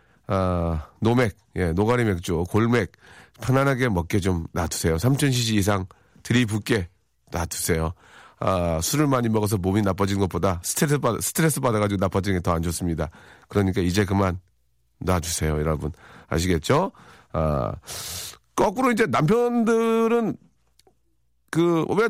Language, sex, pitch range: Korean, male, 100-165 Hz